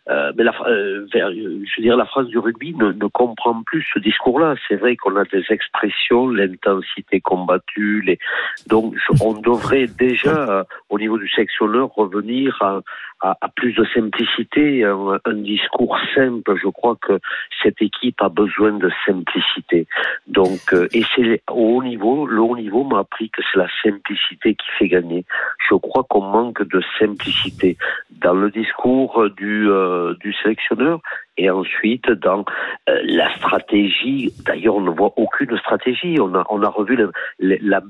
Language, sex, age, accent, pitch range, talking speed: French, male, 50-69, French, 100-125 Hz, 170 wpm